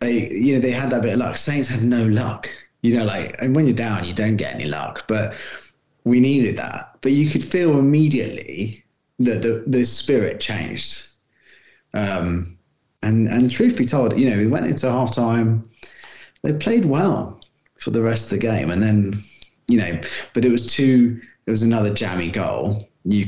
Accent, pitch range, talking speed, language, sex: British, 105-125 Hz, 195 wpm, English, male